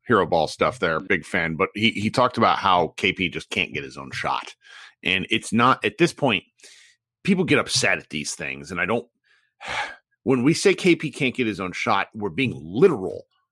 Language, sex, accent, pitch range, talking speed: English, male, American, 105-150 Hz, 205 wpm